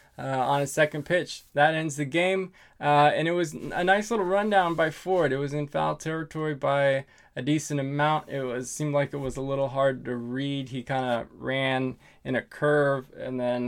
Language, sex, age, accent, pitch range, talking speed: English, male, 20-39, American, 125-150 Hz, 210 wpm